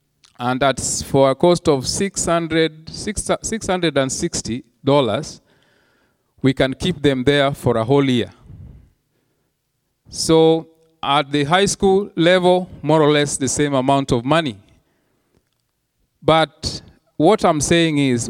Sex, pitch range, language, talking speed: male, 120-160 Hz, English, 115 wpm